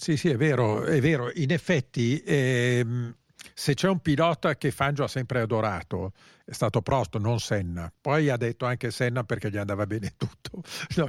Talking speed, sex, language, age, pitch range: 185 wpm, male, Italian, 50-69, 115-160 Hz